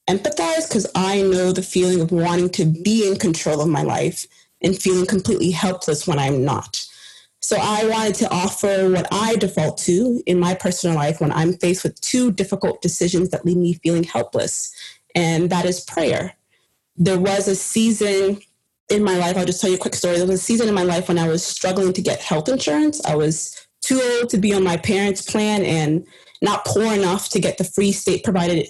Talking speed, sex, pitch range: 205 wpm, female, 170-200 Hz